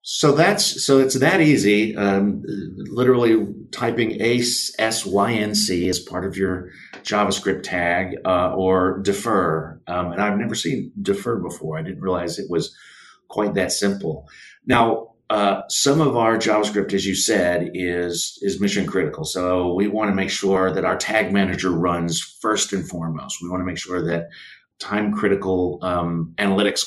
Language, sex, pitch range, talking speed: English, male, 85-100 Hz, 165 wpm